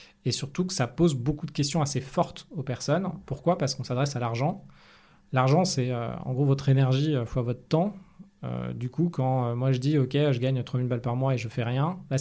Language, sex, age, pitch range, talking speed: French, male, 20-39, 125-155 Hz, 240 wpm